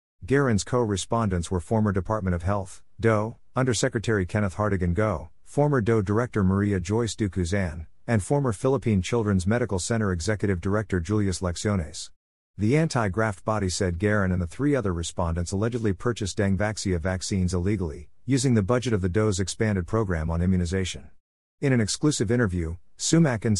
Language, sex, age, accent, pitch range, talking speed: English, male, 50-69, American, 90-115 Hz, 145 wpm